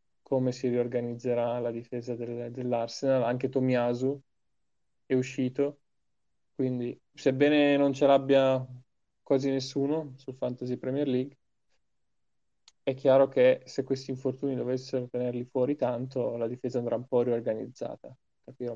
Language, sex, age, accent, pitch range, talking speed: Italian, male, 20-39, native, 125-140 Hz, 125 wpm